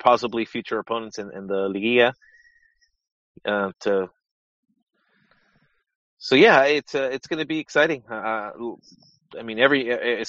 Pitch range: 115-155 Hz